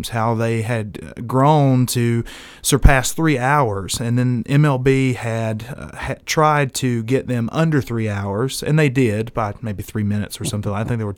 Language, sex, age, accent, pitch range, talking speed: English, male, 30-49, American, 115-140 Hz, 185 wpm